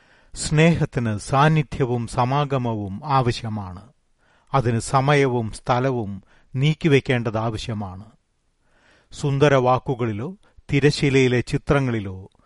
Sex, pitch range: male, 115-145 Hz